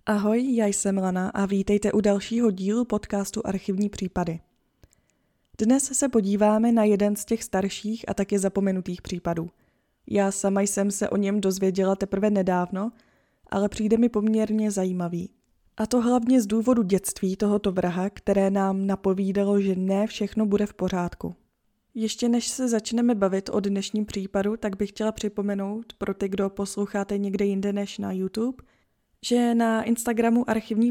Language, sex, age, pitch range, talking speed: Czech, female, 20-39, 195-225 Hz, 155 wpm